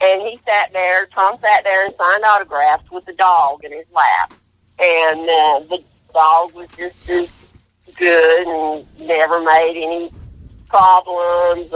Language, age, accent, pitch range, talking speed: English, 50-69, American, 155-185 Hz, 150 wpm